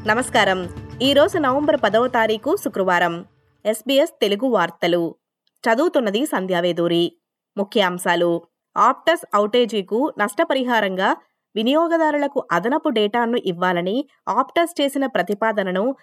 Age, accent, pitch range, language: 20-39, native, 185-265 Hz, Telugu